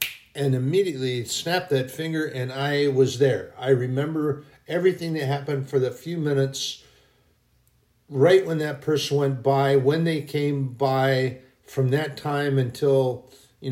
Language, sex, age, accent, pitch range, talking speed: English, male, 50-69, American, 120-140 Hz, 145 wpm